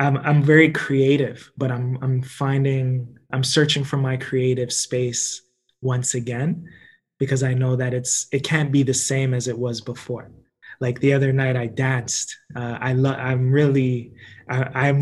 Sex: male